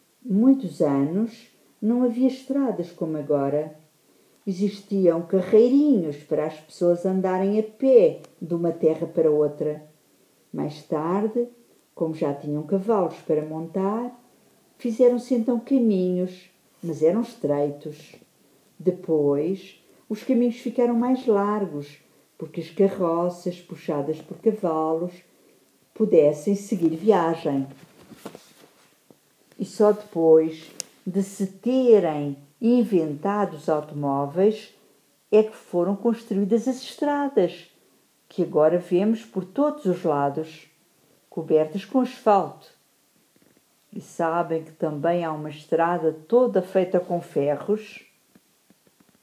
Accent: Brazilian